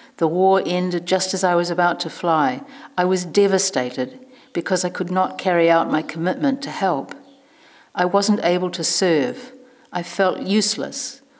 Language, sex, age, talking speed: English, female, 50-69, 165 wpm